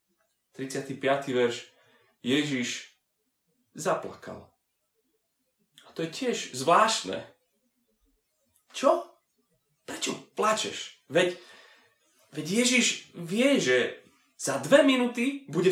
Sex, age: male, 30-49